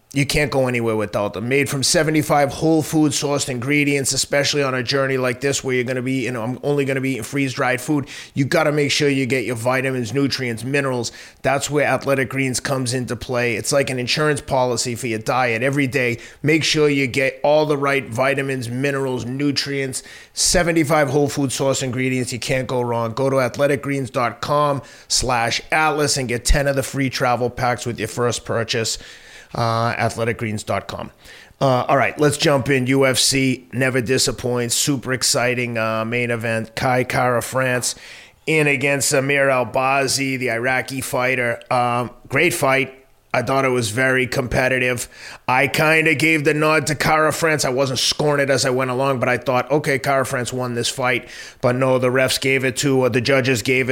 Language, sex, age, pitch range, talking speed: English, male, 30-49, 125-140 Hz, 185 wpm